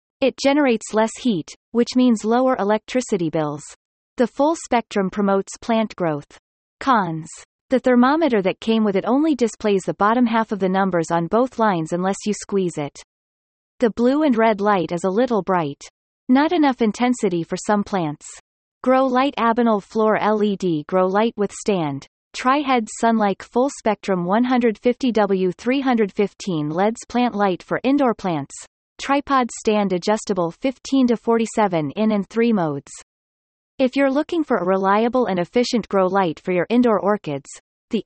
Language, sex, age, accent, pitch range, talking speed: English, female, 30-49, American, 190-245 Hz, 155 wpm